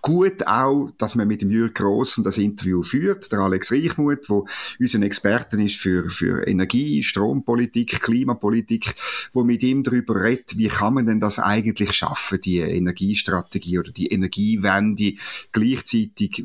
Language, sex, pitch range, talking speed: German, male, 105-135 Hz, 150 wpm